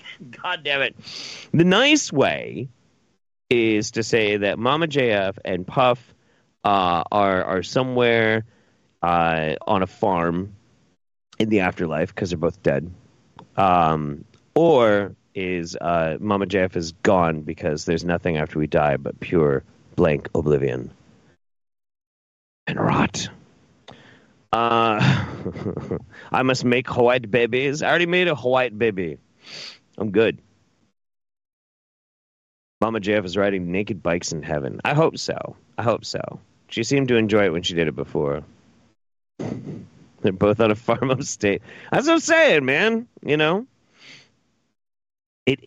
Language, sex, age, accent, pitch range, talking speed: English, male, 30-49, American, 90-130 Hz, 135 wpm